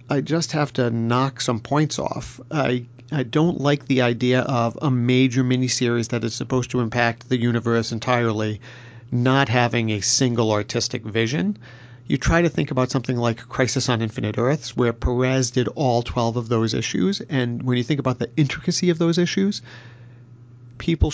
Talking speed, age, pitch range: 175 wpm, 40-59, 120-140 Hz